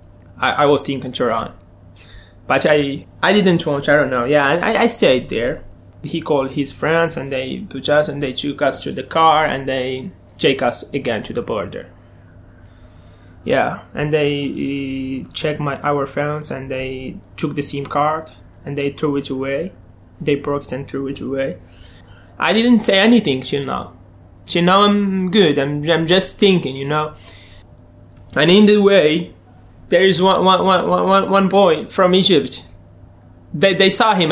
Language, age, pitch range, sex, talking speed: English, 20-39, 130-185 Hz, male, 175 wpm